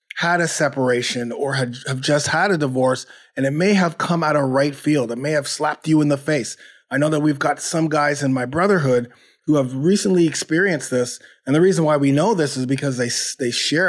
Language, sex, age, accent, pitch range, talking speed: English, male, 30-49, American, 130-155 Hz, 235 wpm